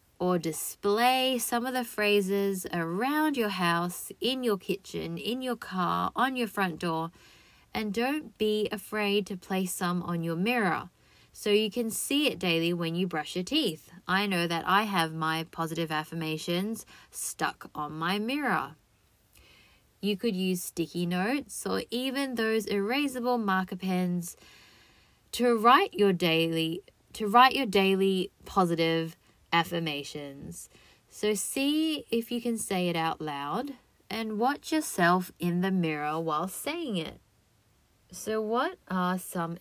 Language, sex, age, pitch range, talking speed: English, female, 20-39, 165-225 Hz, 145 wpm